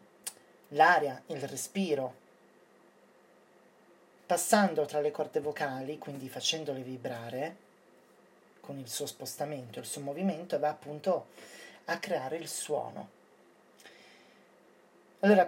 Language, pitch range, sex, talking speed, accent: Italian, 140-185 Hz, male, 95 wpm, native